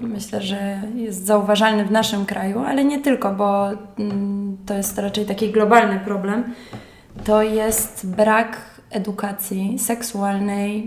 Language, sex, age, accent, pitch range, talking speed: Polish, female, 20-39, native, 195-215 Hz, 120 wpm